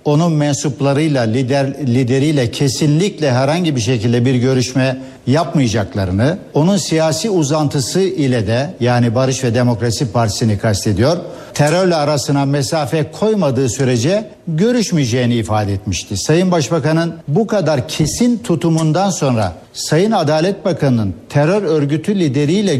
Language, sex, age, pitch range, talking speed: Turkish, male, 60-79, 130-180 Hz, 115 wpm